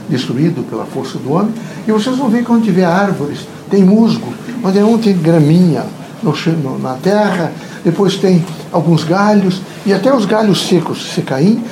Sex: male